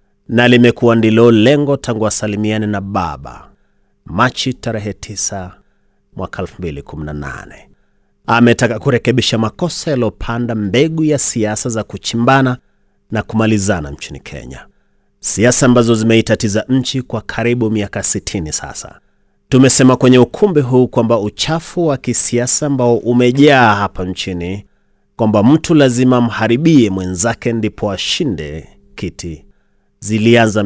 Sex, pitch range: male, 100-125 Hz